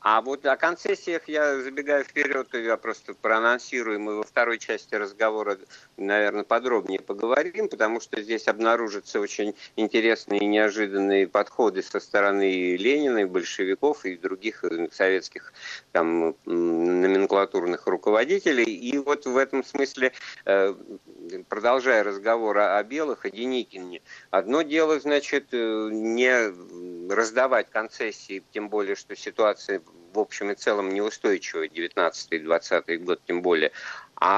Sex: male